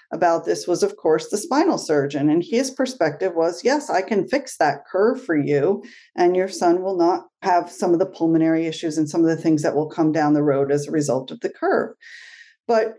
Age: 40-59